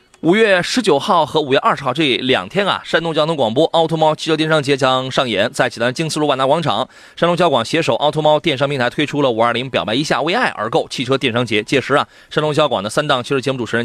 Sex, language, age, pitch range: male, Chinese, 30-49, 125-165 Hz